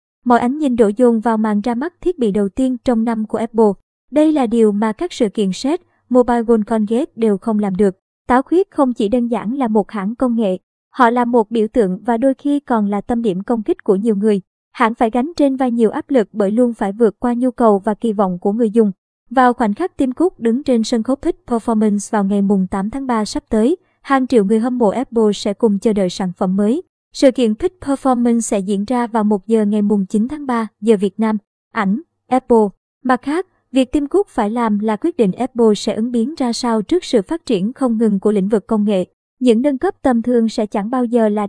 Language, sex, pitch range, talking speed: Vietnamese, male, 215-255 Hz, 245 wpm